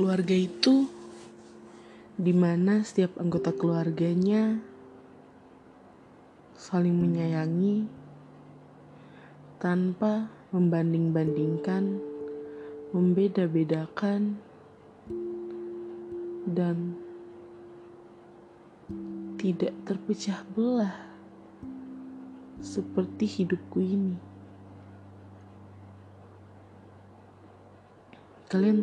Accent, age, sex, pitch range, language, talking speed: native, 20-39, female, 115-185 Hz, Indonesian, 40 wpm